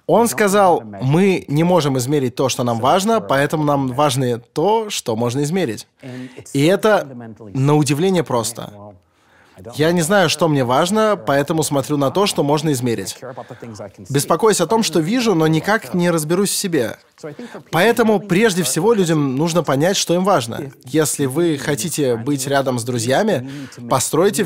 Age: 20-39